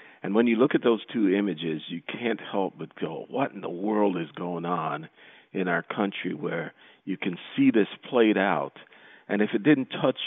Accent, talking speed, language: American, 205 wpm, English